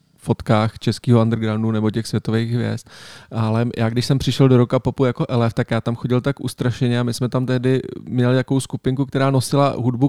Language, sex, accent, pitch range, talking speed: Czech, male, native, 115-135 Hz, 200 wpm